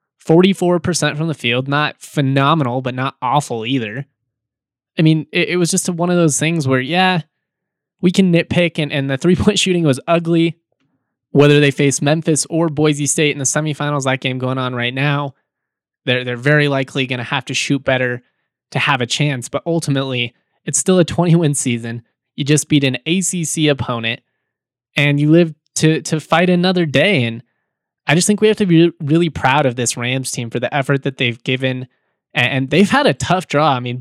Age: 20-39